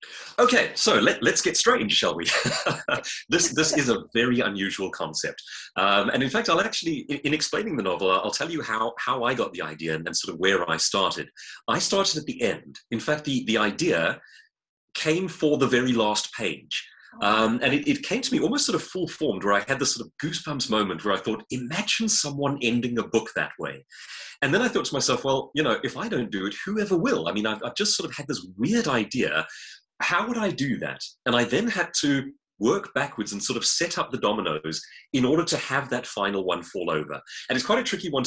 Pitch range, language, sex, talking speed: 105-155 Hz, English, male, 230 wpm